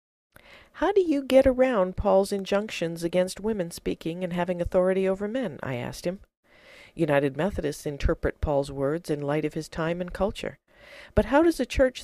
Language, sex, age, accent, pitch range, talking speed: English, female, 50-69, American, 150-200 Hz, 175 wpm